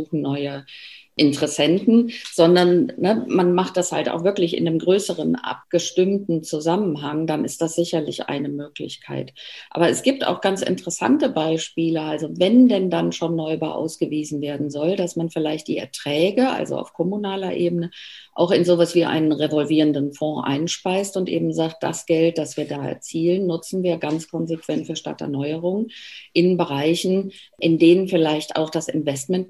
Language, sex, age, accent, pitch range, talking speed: German, female, 50-69, German, 150-175 Hz, 155 wpm